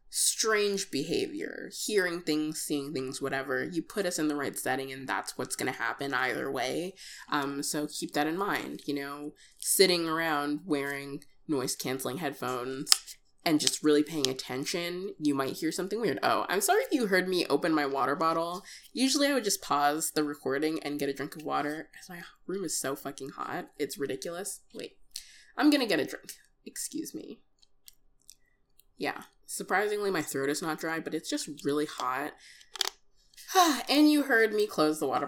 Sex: female